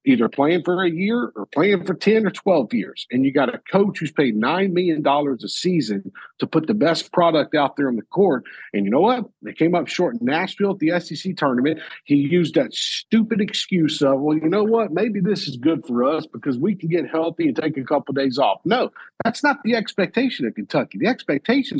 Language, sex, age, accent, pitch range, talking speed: English, male, 50-69, American, 160-225 Hz, 230 wpm